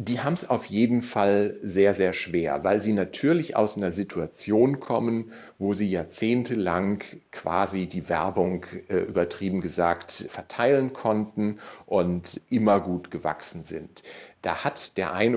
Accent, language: German, German